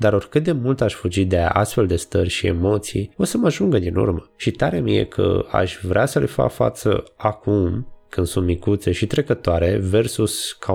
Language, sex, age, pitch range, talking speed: Romanian, male, 20-39, 90-110 Hz, 200 wpm